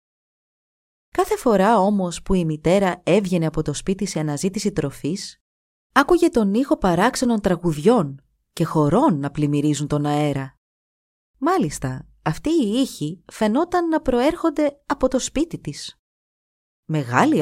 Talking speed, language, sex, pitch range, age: 125 wpm, Greek, female, 150-230 Hz, 30-49